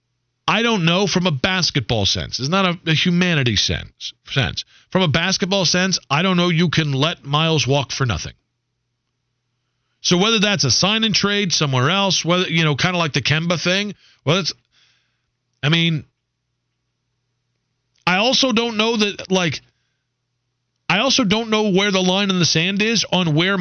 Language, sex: English, male